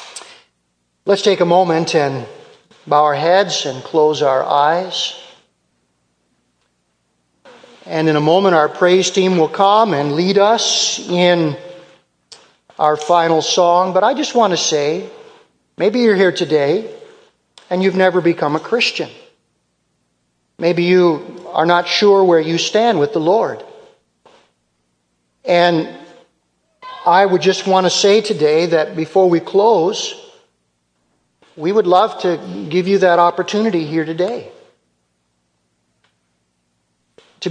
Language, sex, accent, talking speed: English, male, American, 125 wpm